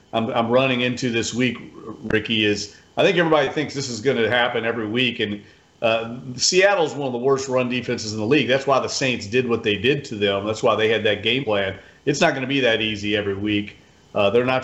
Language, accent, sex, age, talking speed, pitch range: English, American, male, 40-59, 240 wpm, 105-135 Hz